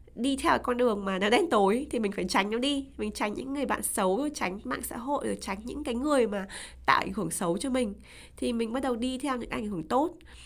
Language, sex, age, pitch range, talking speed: Vietnamese, female, 20-39, 195-270 Hz, 265 wpm